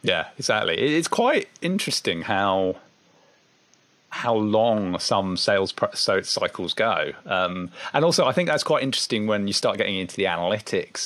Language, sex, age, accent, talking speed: English, male, 40-59, British, 150 wpm